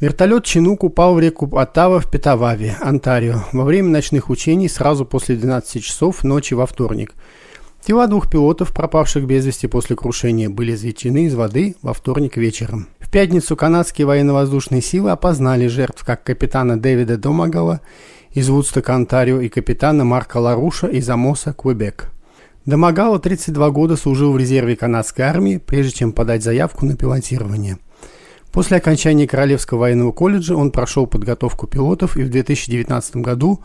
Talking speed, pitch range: 150 wpm, 120-155 Hz